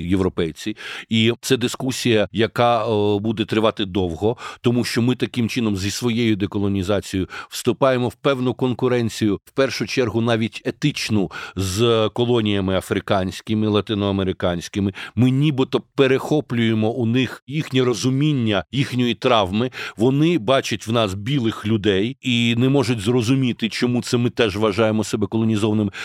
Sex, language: male, Ukrainian